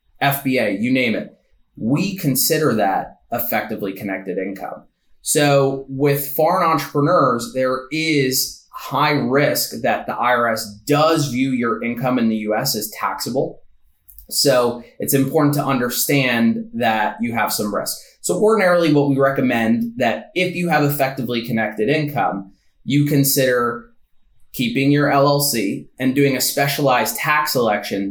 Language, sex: English, male